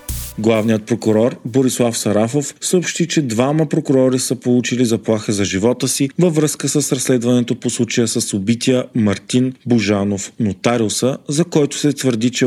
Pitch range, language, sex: 110-135 Hz, Bulgarian, male